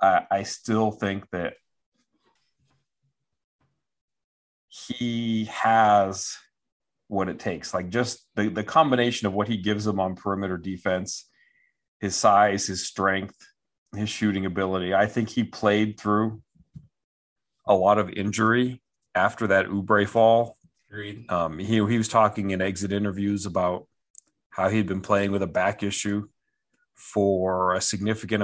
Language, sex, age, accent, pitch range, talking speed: English, male, 40-59, American, 100-120 Hz, 130 wpm